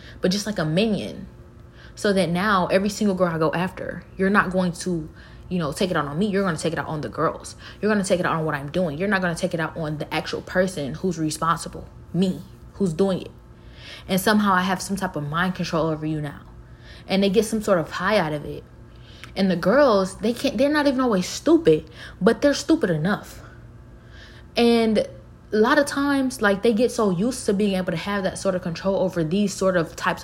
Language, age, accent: English, 20-39, American